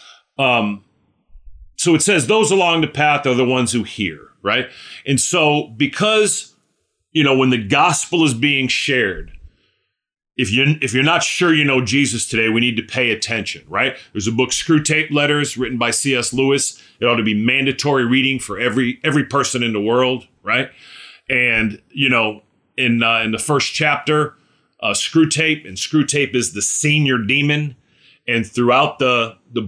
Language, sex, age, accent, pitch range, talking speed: English, male, 40-59, American, 115-145 Hz, 170 wpm